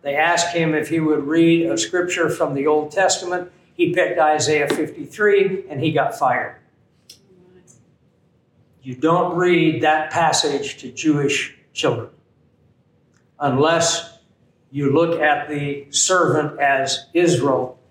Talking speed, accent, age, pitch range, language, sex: 125 wpm, American, 60-79, 145-175 Hz, English, male